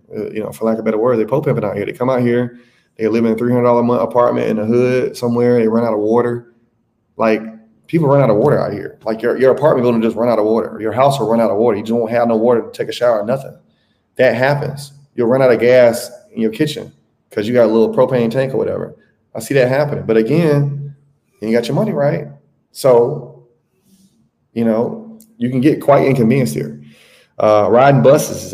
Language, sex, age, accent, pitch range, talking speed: English, male, 30-49, American, 110-135 Hz, 240 wpm